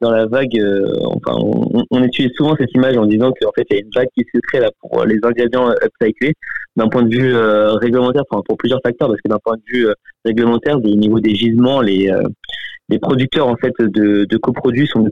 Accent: French